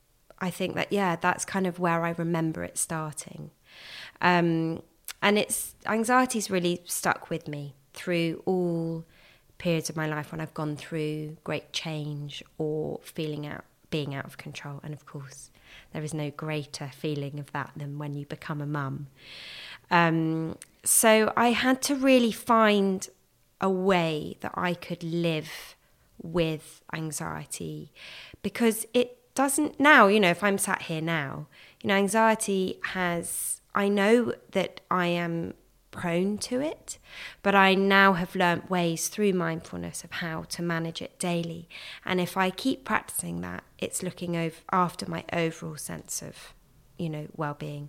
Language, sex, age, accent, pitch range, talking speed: English, female, 20-39, British, 150-185 Hz, 155 wpm